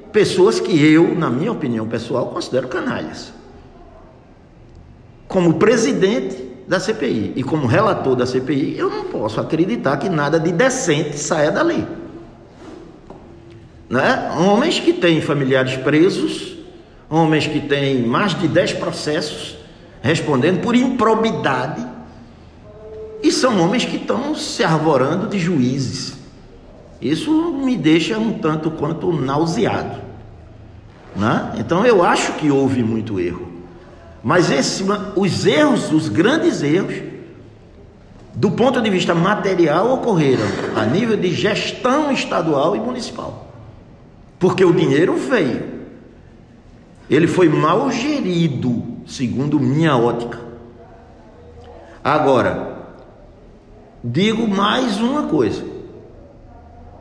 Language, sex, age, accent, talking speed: Portuguese, male, 60-79, Brazilian, 105 wpm